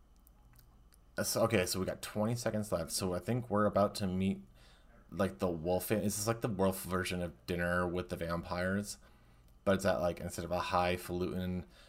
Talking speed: 180 wpm